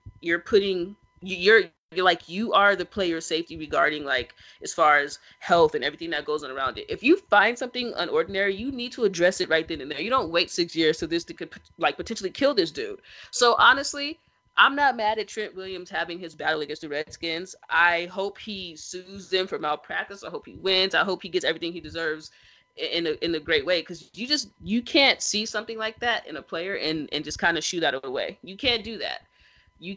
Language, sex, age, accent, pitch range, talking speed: English, female, 20-39, American, 165-220 Hz, 230 wpm